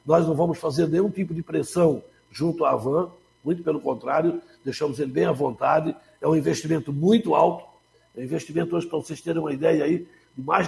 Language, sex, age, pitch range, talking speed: Portuguese, male, 60-79, 155-180 Hz, 200 wpm